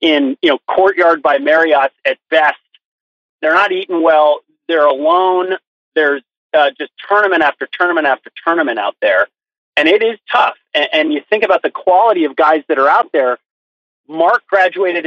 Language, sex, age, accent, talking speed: English, male, 30-49, American, 170 wpm